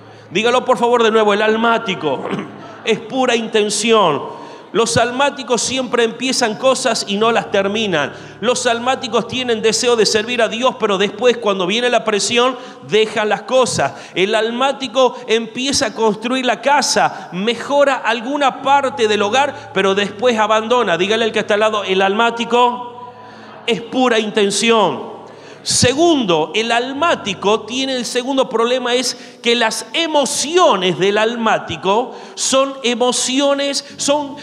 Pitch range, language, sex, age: 220-260 Hz, Spanish, male, 40-59